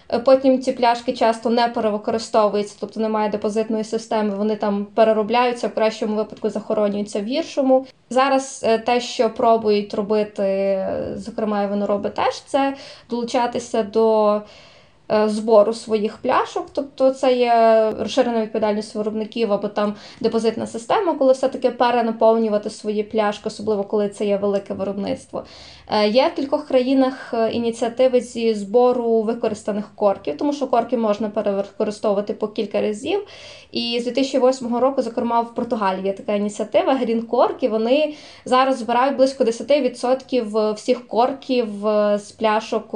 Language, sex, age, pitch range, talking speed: Ukrainian, female, 20-39, 215-250 Hz, 130 wpm